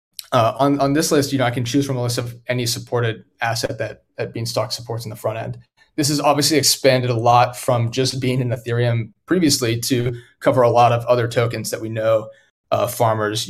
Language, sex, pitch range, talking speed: English, male, 115-135 Hz, 220 wpm